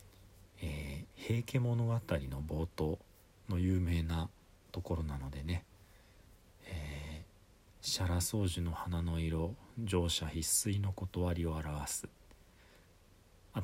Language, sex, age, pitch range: Japanese, male, 40-59, 80-100 Hz